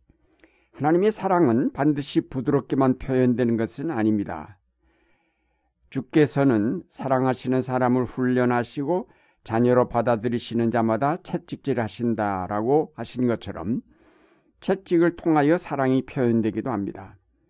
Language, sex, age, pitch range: Korean, male, 60-79, 110-140 Hz